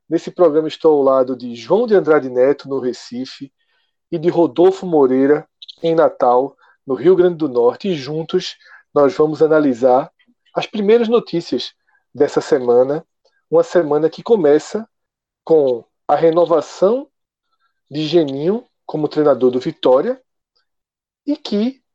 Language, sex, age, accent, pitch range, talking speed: Portuguese, male, 40-59, Brazilian, 150-215 Hz, 130 wpm